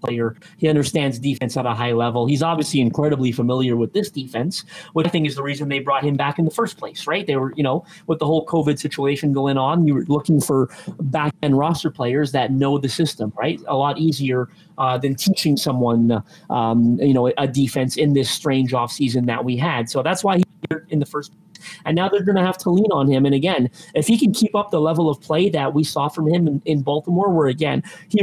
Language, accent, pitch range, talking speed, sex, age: English, American, 145-185 Hz, 235 wpm, male, 30-49